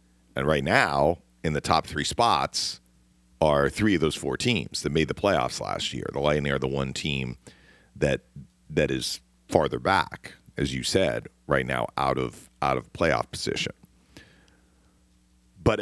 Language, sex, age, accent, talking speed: English, male, 40-59, American, 165 wpm